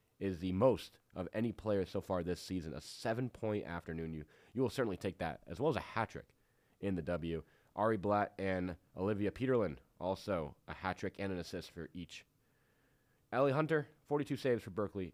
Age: 30-49